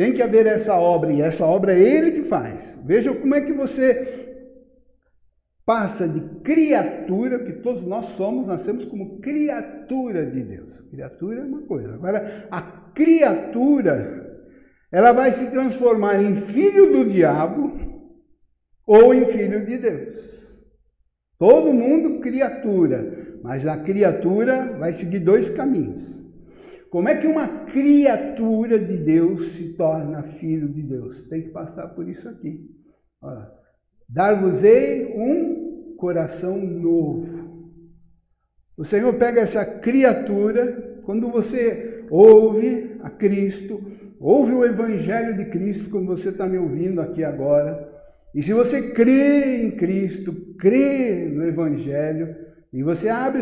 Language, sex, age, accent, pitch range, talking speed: Portuguese, male, 60-79, Brazilian, 175-255 Hz, 130 wpm